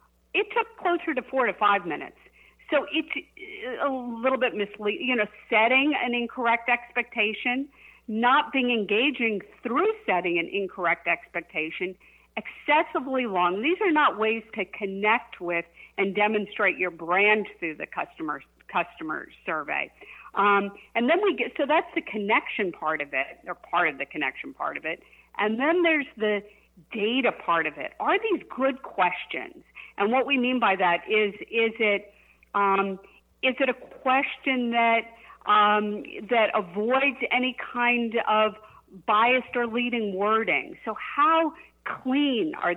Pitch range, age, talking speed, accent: 200-275 Hz, 50-69, 145 wpm, American